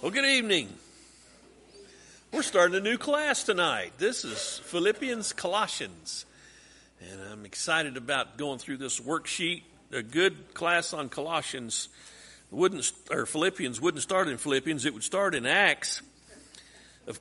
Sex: male